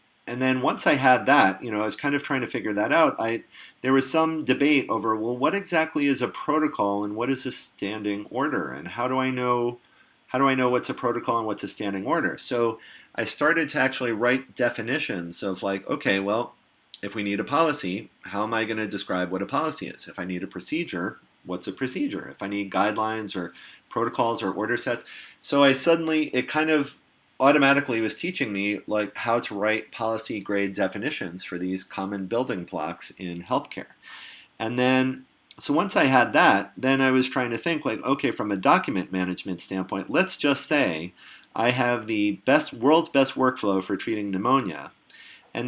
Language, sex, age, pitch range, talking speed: English, male, 30-49, 100-135 Hz, 200 wpm